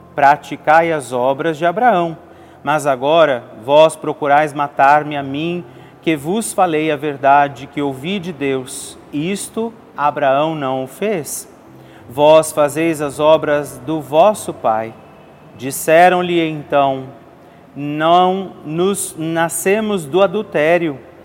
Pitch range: 140-180 Hz